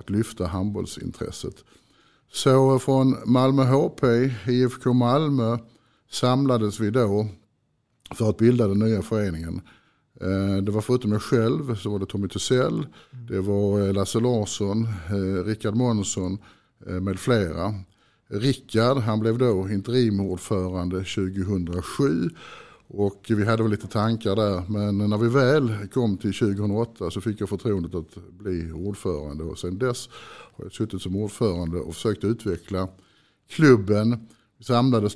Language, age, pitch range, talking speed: Swedish, 50-69, 95-120 Hz, 130 wpm